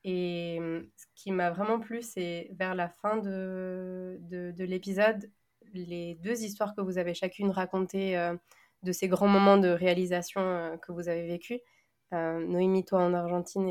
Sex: female